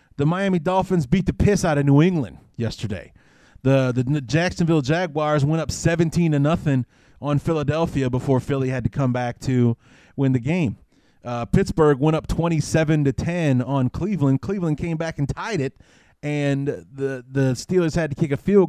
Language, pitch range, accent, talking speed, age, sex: English, 115-155 Hz, American, 175 wpm, 30-49, male